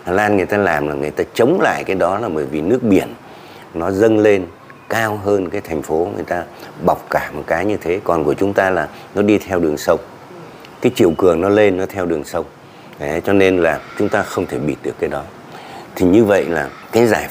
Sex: male